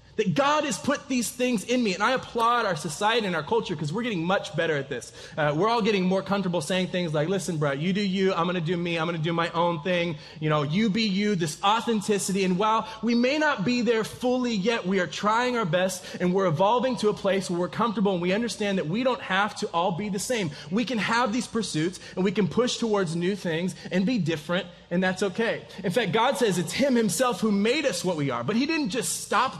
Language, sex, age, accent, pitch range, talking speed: English, male, 20-39, American, 175-230 Hz, 255 wpm